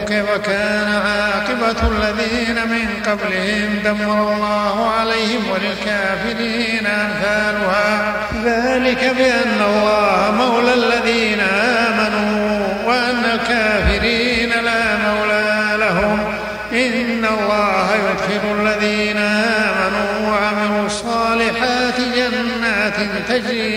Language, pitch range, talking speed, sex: Arabic, 210-230 Hz, 75 wpm, male